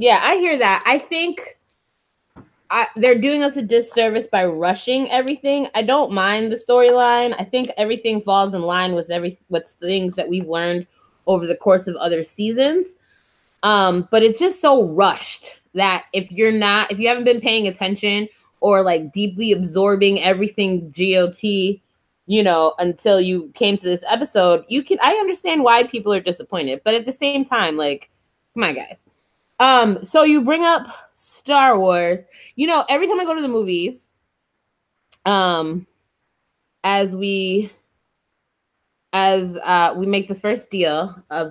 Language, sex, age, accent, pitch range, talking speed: English, female, 20-39, American, 185-250 Hz, 165 wpm